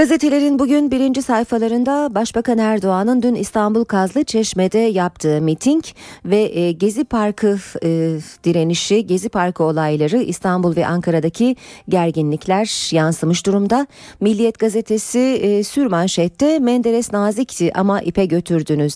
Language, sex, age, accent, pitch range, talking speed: Turkish, female, 40-59, native, 175-235 Hz, 105 wpm